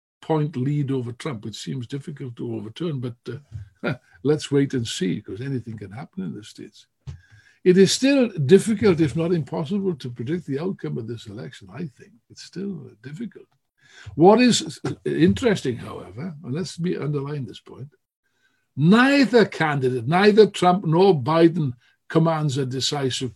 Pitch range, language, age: 130-185 Hz, English, 60-79